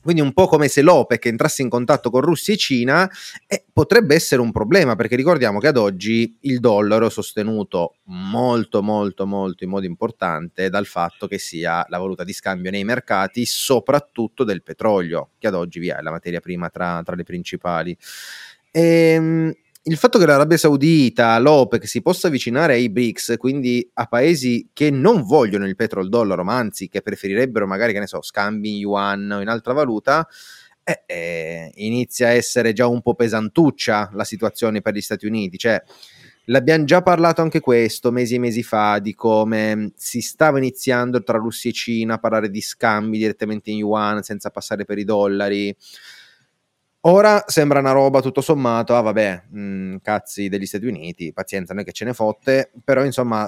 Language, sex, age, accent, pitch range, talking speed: Italian, male, 30-49, native, 100-135 Hz, 180 wpm